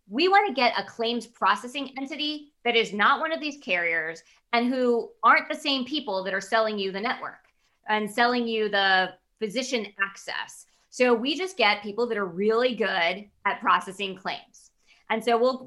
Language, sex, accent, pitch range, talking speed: English, female, American, 195-255 Hz, 185 wpm